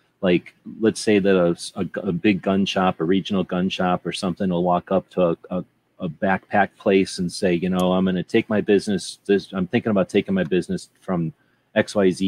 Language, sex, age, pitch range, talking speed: English, male, 30-49, 90-105 Hz, 215 wpm